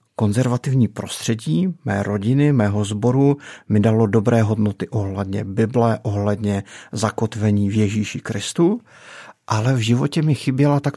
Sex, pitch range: male, 105-130 Hz